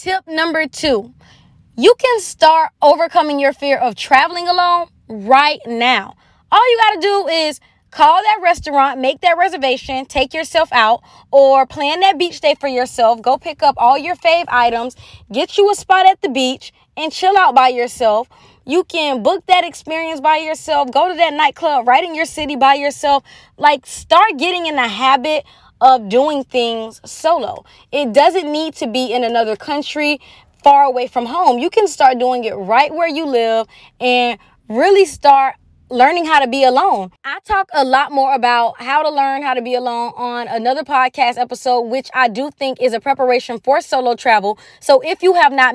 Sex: female